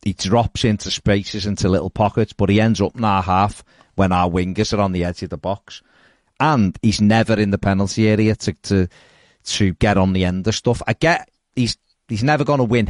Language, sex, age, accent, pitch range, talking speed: English, male, 40-59, British, 90-105 Hz, 225 wpm